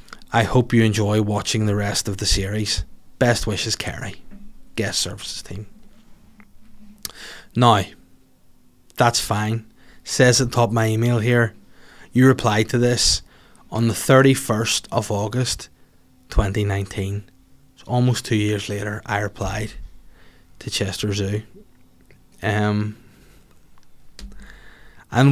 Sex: male